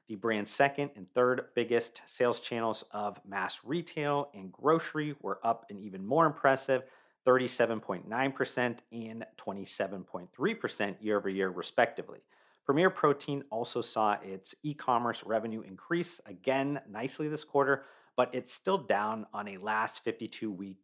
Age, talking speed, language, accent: 40-59, 125 wpm, English, American